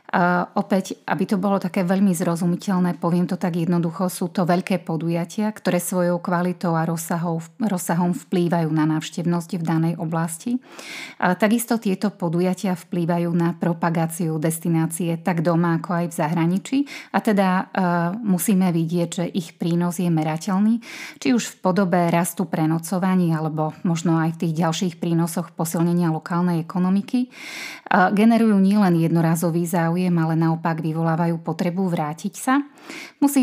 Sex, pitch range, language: female, 170-200 Hz, Slovak